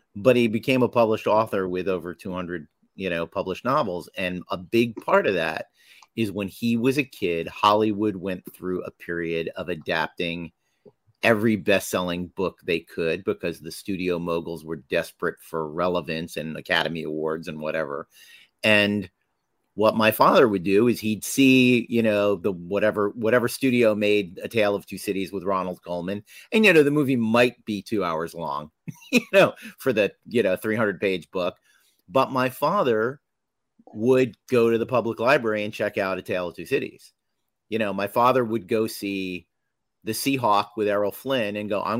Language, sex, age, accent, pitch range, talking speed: English, male, 40-59, American, 90-120 Hz, 180 wpm